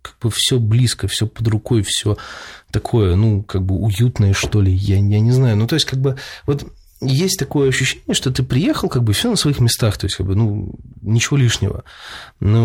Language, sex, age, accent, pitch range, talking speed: Russian, male, 20-39, native, 95-125 Hz, 215 wpm